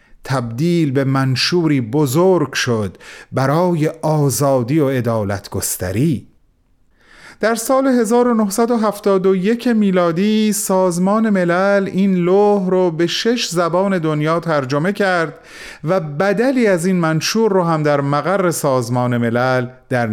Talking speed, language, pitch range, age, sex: 110 wpm, Persian, 130-180 Hz, 30-49, male